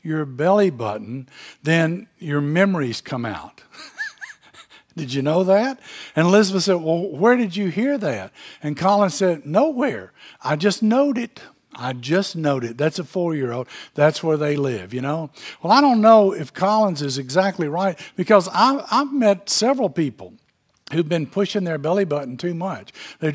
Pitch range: 150-200 Hz